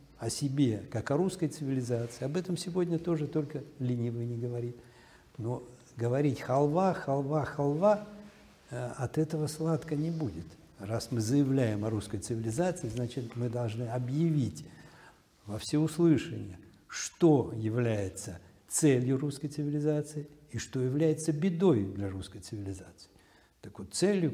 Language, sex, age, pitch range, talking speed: Russian, male, 60-79, 115-155 Hz, 125 wpm